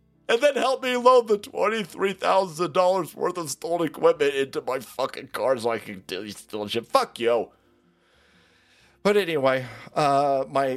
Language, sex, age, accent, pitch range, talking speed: English, male, 30-49, American, 110-170 Hz, 155 wpm